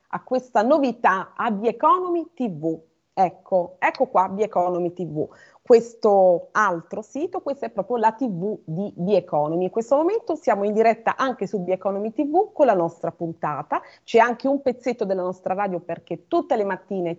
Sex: female